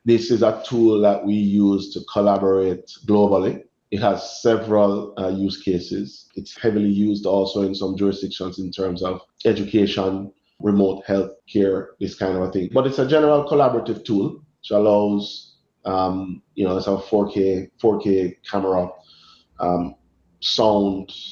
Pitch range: 90-105 Hz